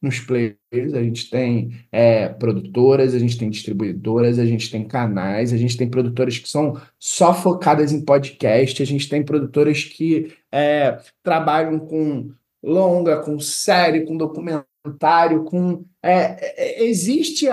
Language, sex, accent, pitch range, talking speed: Portuguese, male, Brazilian, 135-190 Hz, 140 wpm